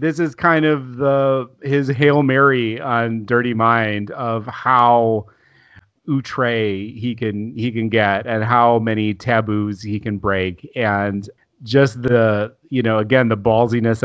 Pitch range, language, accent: 110-140 Hz, English, American